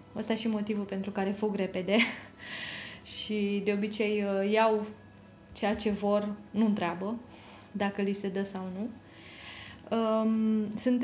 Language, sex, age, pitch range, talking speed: Romanian, female, 20-39, 200-220 Hz, 125 wpm